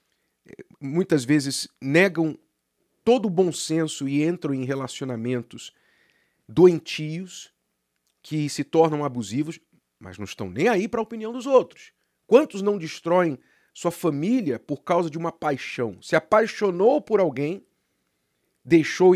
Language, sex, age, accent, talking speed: Portuguese, male, 50-69, Brazilian, 130 wpm